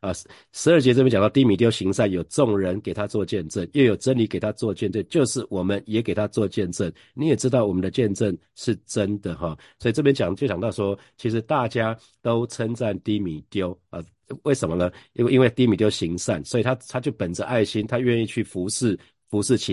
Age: 50-69